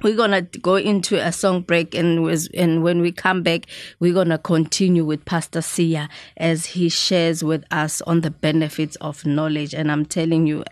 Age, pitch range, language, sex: 20-39, 160-175 Hz, Japanese, female